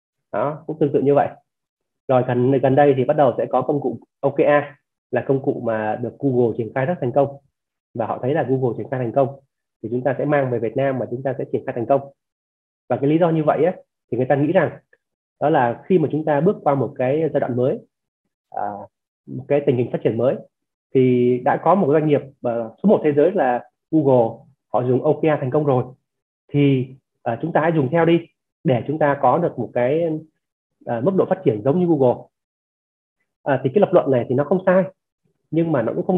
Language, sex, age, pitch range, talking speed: Vietnamese, male, 20-39, 125-150 Hz, 235 wpm